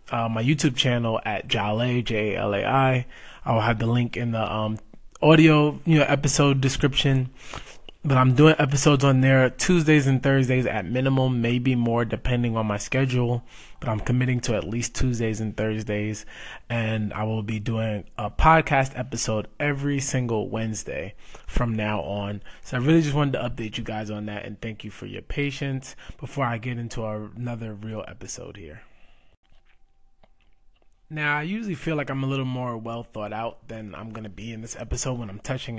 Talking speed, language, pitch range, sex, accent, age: 180 wpm, English, 110-135 Hz, male, American, 20-39